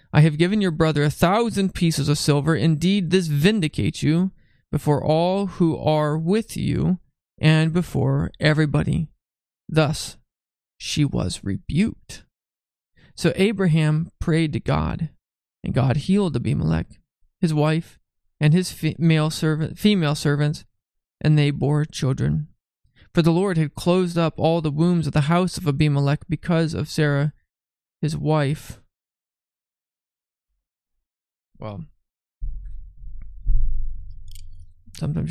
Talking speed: 115 wpm